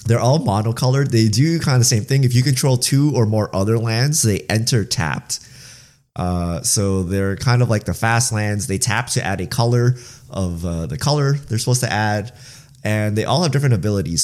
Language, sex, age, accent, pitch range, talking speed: English, male, 30-49, American, 100-130 Hz, 210 wpm